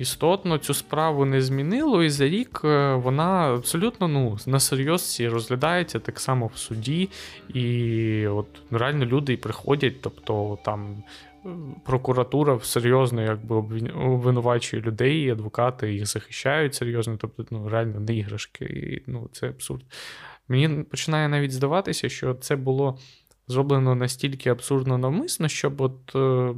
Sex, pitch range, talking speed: male, 115-145 Hz, 130 wpm